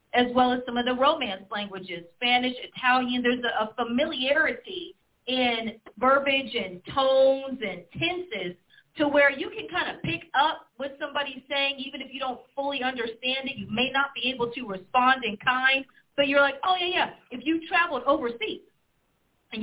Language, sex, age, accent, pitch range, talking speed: English, female, 40-59, American, 230-280 Hz, 175 wpm